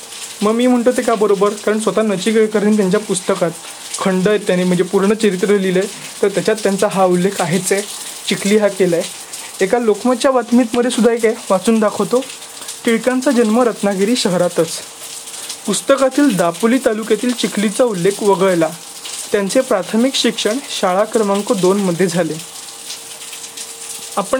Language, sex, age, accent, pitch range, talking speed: Marathi, male, 20-39, native, 190-240 Hz, 115 wpm